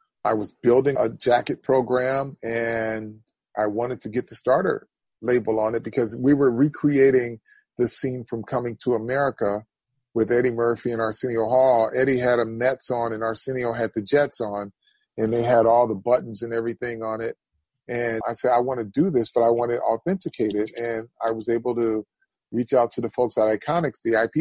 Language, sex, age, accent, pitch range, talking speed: English, male, 30-49, American, 115-130 Hz, 200 wpm